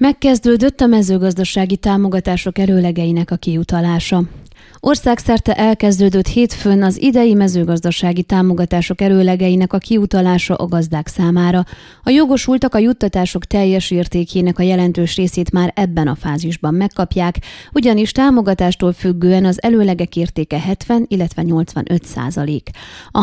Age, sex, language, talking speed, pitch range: 20-39, female, Hungarian, 115 wpm, 175-210 Hz